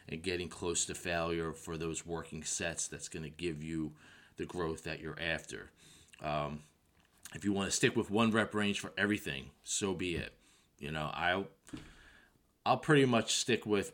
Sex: male